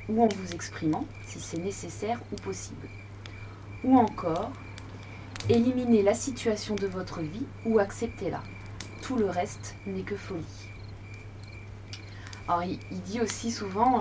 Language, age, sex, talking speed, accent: French, 20-39, female, 135 wpm, French